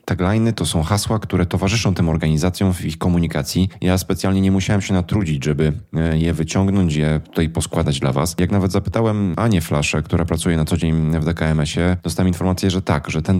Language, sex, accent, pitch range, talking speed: Polish, male, native, 80-95 Hz, 195 wpm